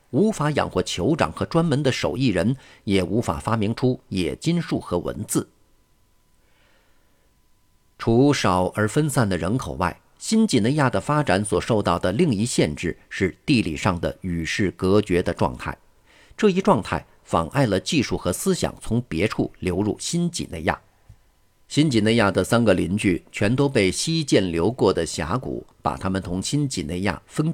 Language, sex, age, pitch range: Chinese, male, 50-69, 95-145 Hz